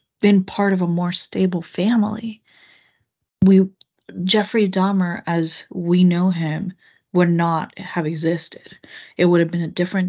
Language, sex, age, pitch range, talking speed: English, female, 20-39, 175-200 Hz, 145 wpm